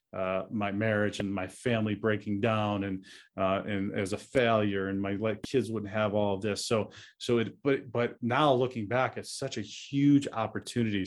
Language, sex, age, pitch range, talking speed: English, male, 40-59, 110-145 Hz, 190 wpm